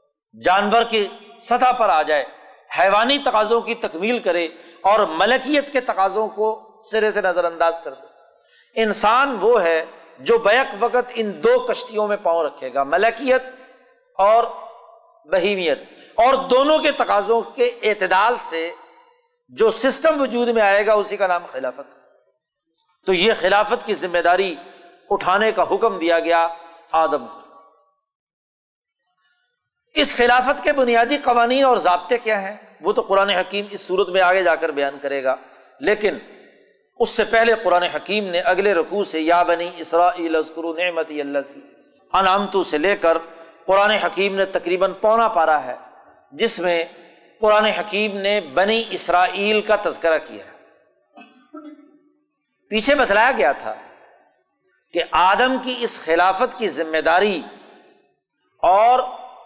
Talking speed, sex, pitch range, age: 135 wpm, male, 175-255 Hz, 50-69